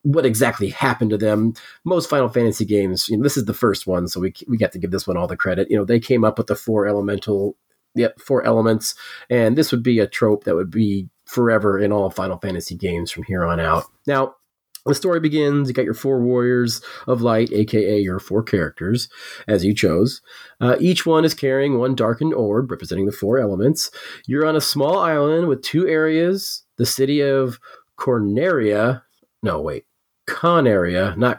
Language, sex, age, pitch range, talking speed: English, male, 30-49, 105-145 Hz, 200 wpm